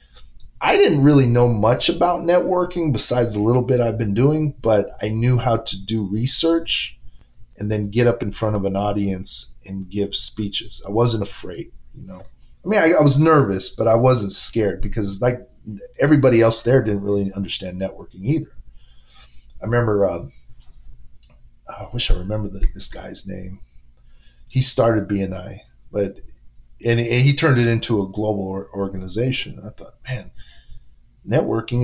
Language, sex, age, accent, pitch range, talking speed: English, male, 30-49, American, 95-125 Hz, 160 wpm